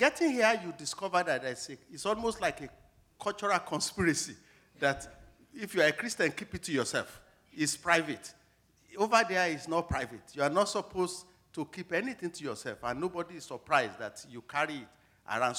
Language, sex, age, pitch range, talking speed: English, male, 50-69, 150-205 Hz, 175 wpm